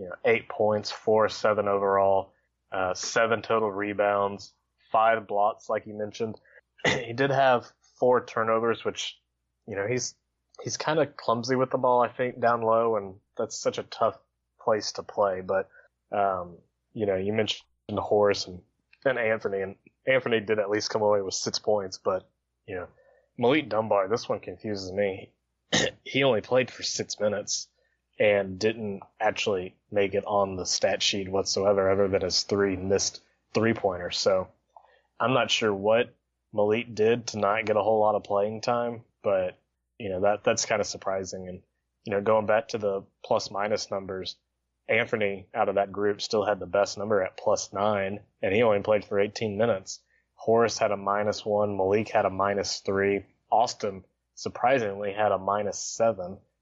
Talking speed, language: 175 wpm, English